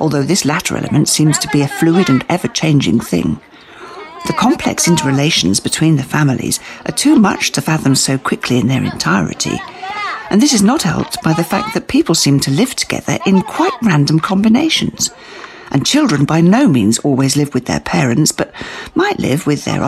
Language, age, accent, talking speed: English, 50-69, British, 185 wpm